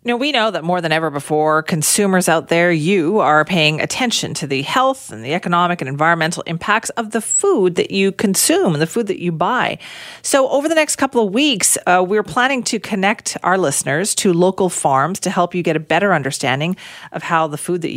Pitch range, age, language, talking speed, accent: 150-200 Hz, 40-59, English, 215 wpm, American